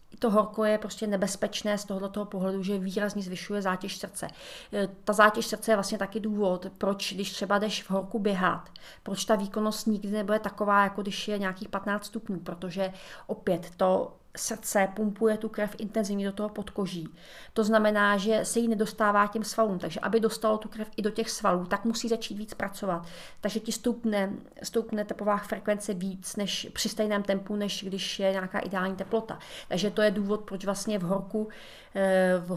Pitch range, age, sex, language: 195-220 Hz, 30-49, female, Czech